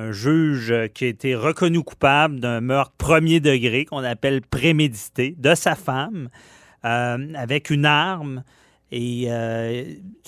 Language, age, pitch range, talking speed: French, 30-49, 125-160 Hz, 135 wpm